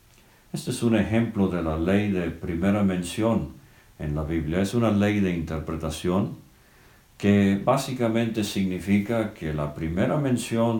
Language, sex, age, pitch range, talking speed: English, male, 60-79, 80-100 Hz, 140 wpm